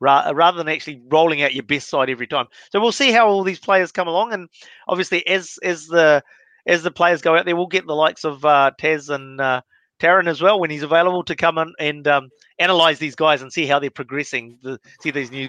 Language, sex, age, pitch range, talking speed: English, male, 30-49, 145-185 Hz, 235 wpm